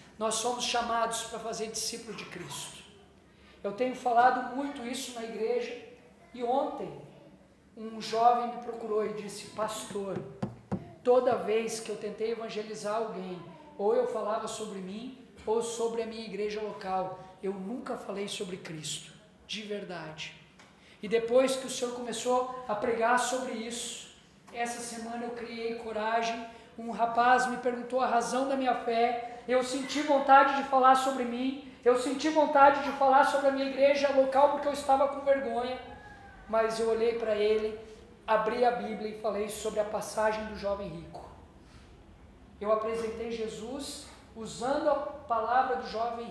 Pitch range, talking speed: 210-245 Hz, 155 wpm